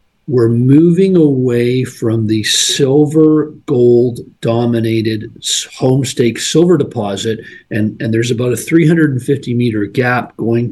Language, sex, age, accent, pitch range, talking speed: English, male, 40-59, American, 115-150 Hz, 110 wpm